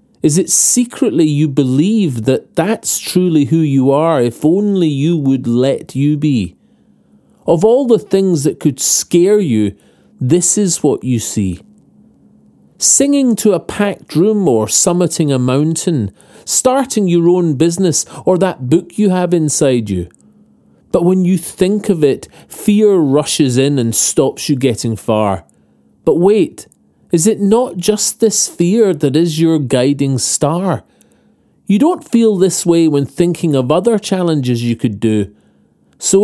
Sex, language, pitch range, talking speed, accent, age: male, English, 130-185 Hz, 150 wpm, British, 40-59